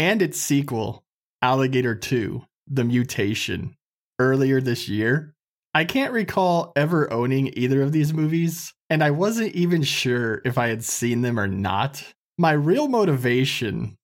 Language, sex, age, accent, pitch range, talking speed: English, male, 20-39, American, 125-175 Hz, 145 wpm